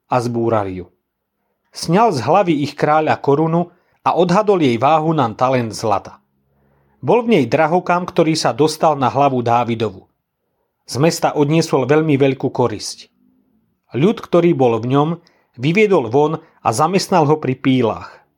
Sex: male